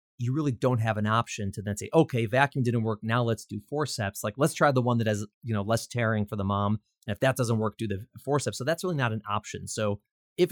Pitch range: 100-125 Hz